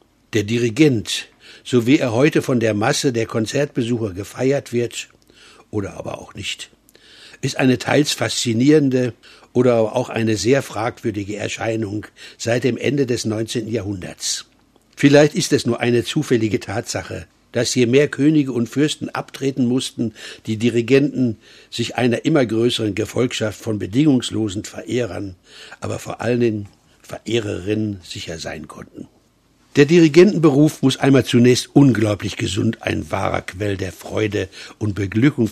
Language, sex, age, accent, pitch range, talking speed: English, male, 60-79, German, 110-130 Hz, 135 wpm